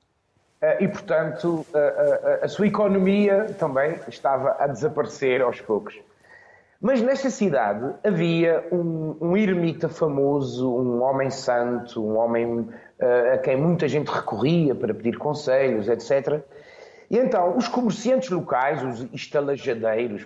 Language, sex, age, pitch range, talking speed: Portuguese, male, 30-49, 125-190 Hz, 120 wpm